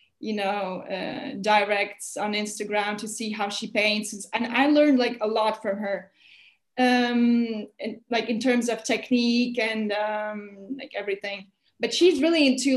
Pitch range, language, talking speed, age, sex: 210-255 Hz, English, 160 wpm, 20-39, female